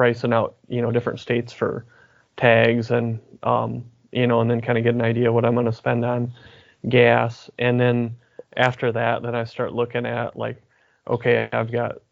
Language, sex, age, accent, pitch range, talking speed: English, male, 30-49, American, 120-125 Hz, 195 wpm